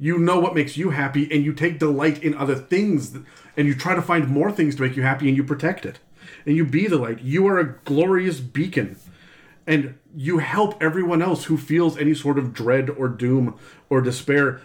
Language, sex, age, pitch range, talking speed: English, male, 40-59, 130-155 Hz, 215 wpm